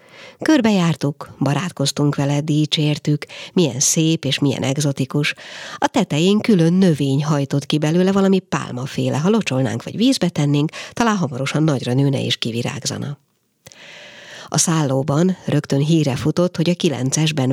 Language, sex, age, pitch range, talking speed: Hungarian, female, 50-69, 135-180 Hz, 130 wpm